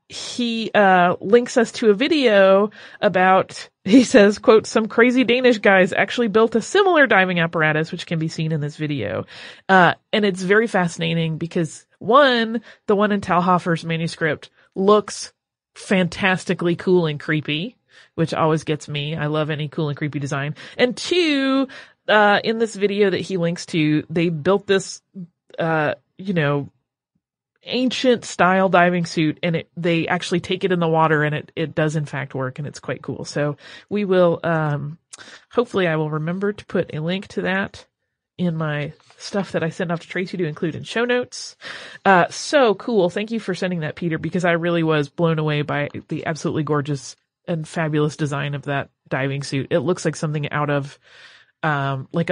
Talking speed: 180 wpm